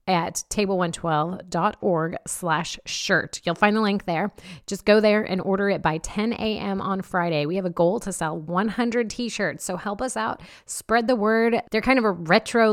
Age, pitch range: 30-49, 165-210 Hz